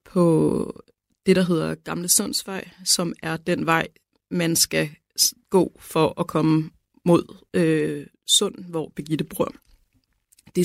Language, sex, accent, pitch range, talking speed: Danish, female, native, 160-190 Hz, 130 wpm